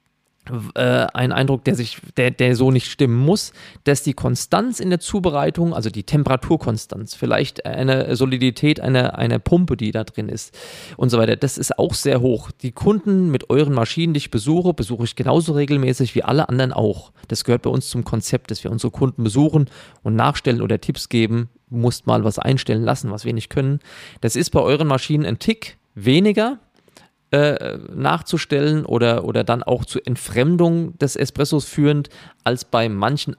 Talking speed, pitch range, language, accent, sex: 180 wpm, 120-155 Hz, German, German, male